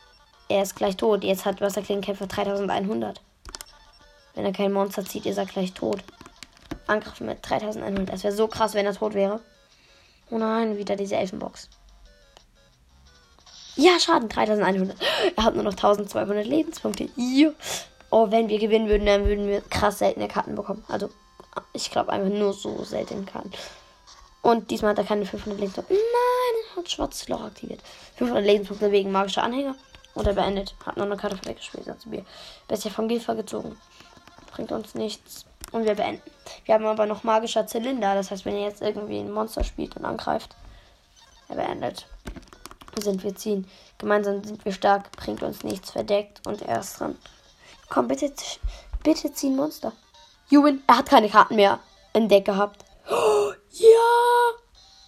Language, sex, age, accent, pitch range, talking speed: German, female, 20-39, German, 200-235 Hz, 165 wpm